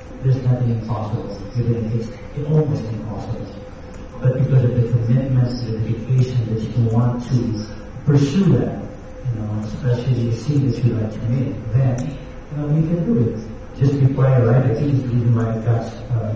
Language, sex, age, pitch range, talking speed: Filipino, male, 50-69, 115-130 Hz, 160 wpm